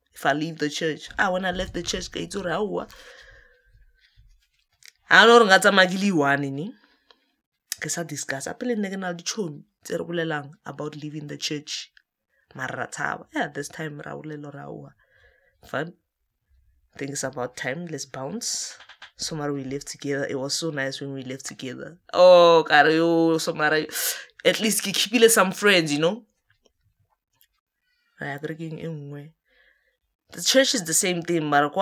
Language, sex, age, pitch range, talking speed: English, female, 20-39, 140-185 Hz, 140 wpm